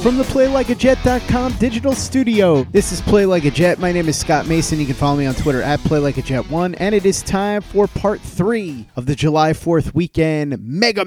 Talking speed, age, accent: 215 wpm, 30-49, American